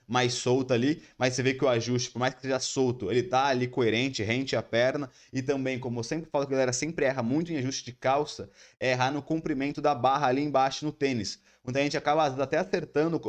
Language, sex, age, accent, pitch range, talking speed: Portuguese, male, 20-39, Brazilian, 125-155 Hz, 240 wpm